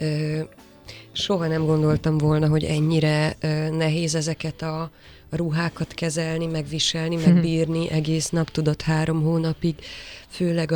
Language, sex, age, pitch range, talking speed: Hungarian, female, 20-39, 155-170 Hz, 105 wpm